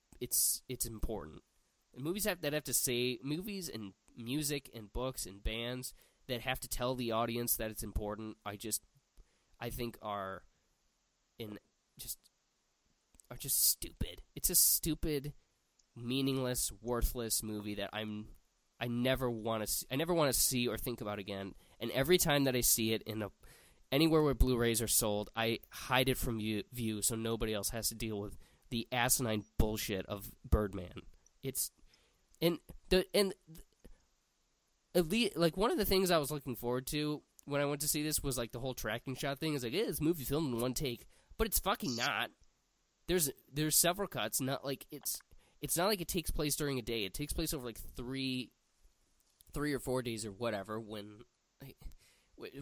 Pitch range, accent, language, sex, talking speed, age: 110-145 Hz, American, English, male, 185 wpm, 20-39